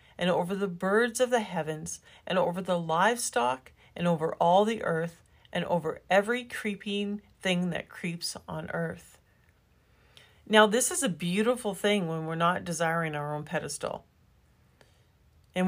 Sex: female